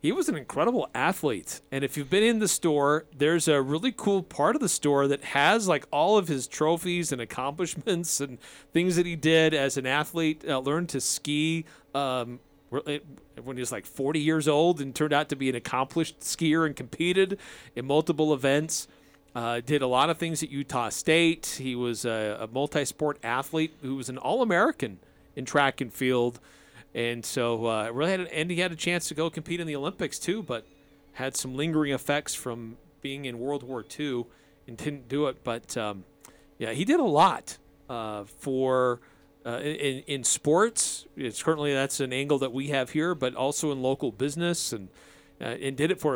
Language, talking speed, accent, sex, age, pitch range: English, 195 wpm, American, male, 40-59, 125-155 Hz